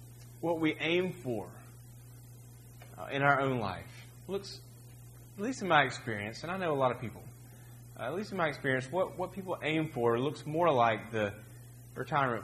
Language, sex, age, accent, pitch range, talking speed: English, male, 30-49, American, 120-140 Hz, 185 wpm